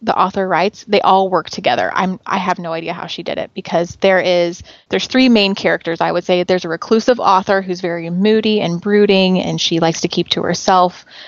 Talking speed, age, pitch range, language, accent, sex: 225 wpm, 20-39, 175-205 Hz, English, American, female